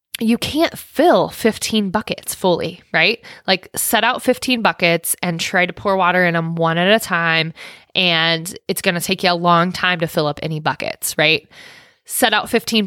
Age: 20-39